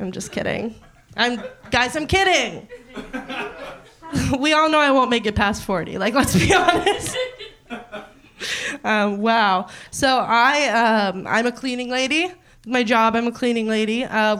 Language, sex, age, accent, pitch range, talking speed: English, female, 20-39, American, 215-280 Hz, 150 wpm